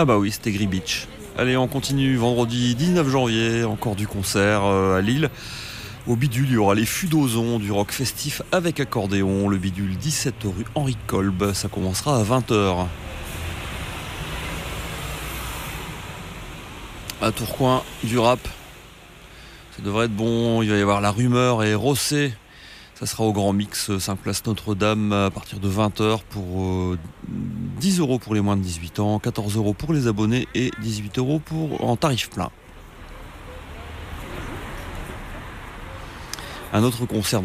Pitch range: 95-120 Hz